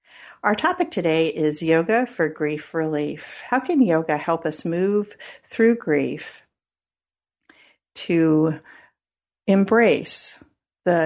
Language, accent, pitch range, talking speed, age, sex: English, American, 155-205 Hz, 105 wpm, 50-69, female